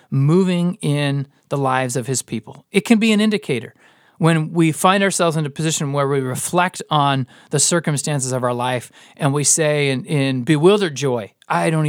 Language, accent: English, American